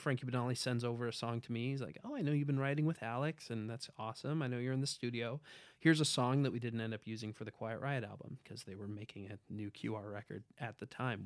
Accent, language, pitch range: American, English, 115-140 Hz